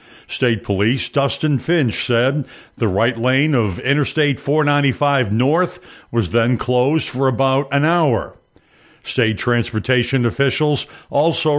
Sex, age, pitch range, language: male, 60-79, 120-150 Hz, English